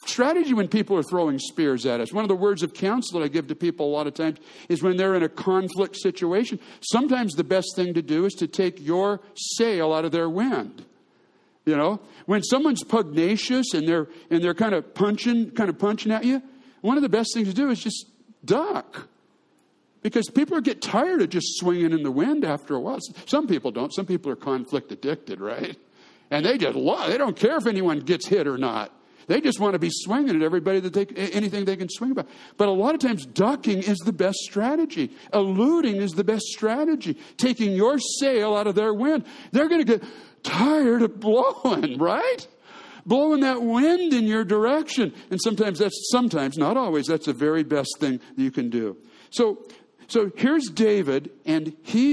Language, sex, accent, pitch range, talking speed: English, male, American, 180-250 Hz, 205 wpm